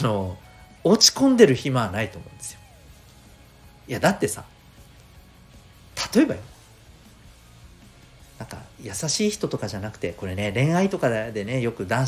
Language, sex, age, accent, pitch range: Japanese, male, 40-59, native, 95-140 Hz